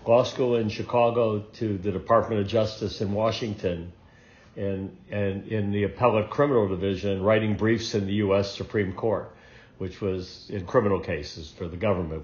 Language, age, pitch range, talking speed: English, 60-79, 95-115 Hz, 160 wpm